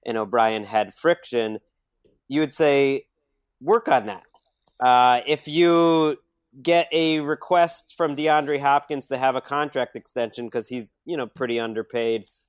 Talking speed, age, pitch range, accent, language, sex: 145 wpm, 30-49, 125-150 Hz, American, English, male